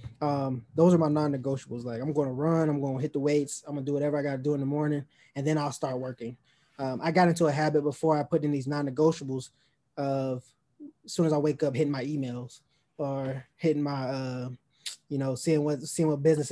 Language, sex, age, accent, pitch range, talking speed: English, male, 20-39, American, 135-155 Hz, 235 wpm